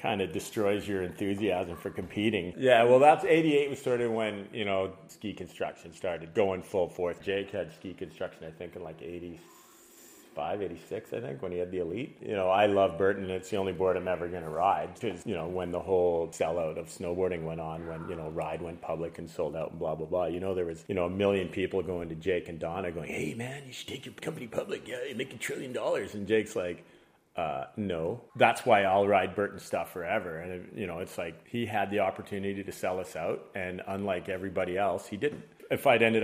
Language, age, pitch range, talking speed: English, 40-59, 90-105 Hz, 230 wpm